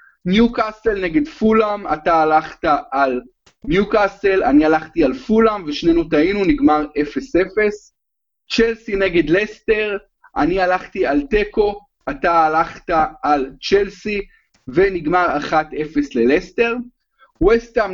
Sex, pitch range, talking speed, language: male, 165-260 Hz, 100 wpm, Hebrew